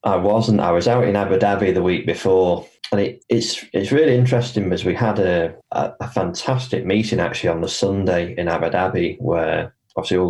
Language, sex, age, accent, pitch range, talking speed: English, male, 20-39, British, 85-105 Hz, 205 wpm